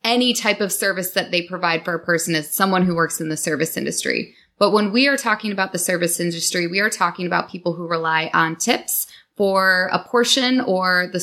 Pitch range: 170-200 Hz